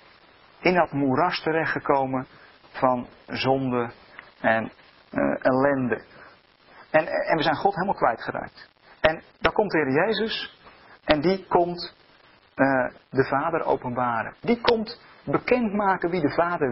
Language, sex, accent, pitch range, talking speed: Dutch, male, Dutch, 130-170 Hz, 120 wpm